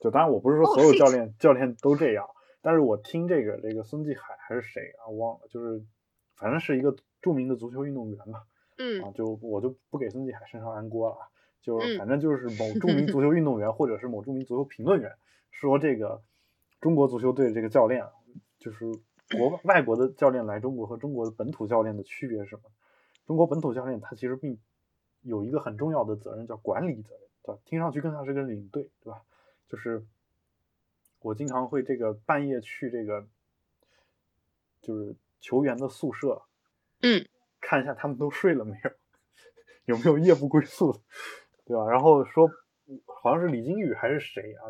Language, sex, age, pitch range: Chinese, male, 20-39, 110-140 Hz